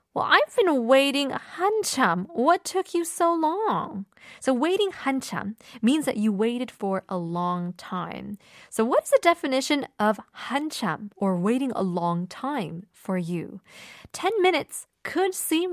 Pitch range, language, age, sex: 185-270 Hz, Korean, 20-39, female